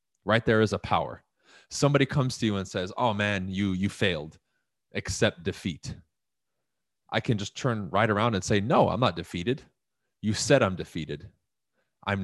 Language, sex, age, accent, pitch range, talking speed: English, male, 30-49, American, 90-115 Hz, 170 wpm